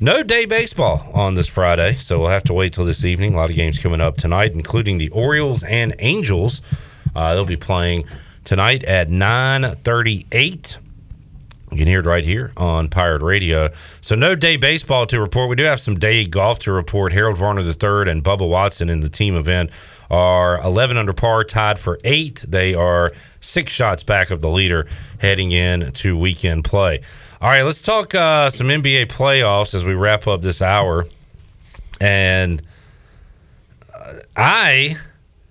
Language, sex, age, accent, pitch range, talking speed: English, male, 40-59, American, 90-120 Hz, 175 wpm